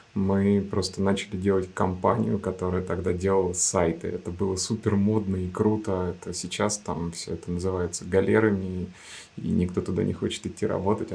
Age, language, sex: 20-39, Russian, male